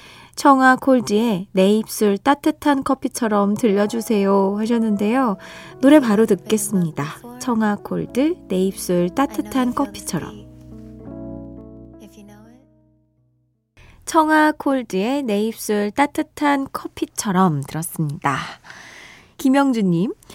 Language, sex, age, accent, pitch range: Korean, female, 20-39, native, 185-260 Hz